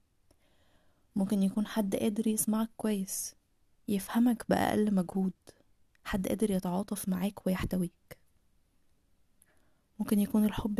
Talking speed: 95 wpm